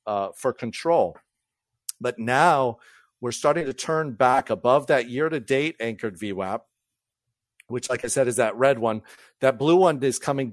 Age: 40-59